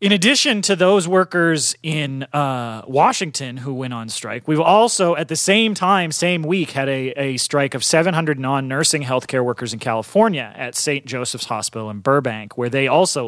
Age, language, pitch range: 30-49, English, 125-170 Hz